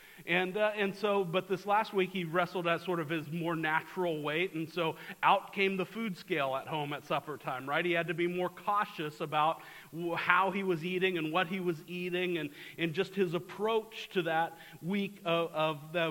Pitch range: 160-200 Hz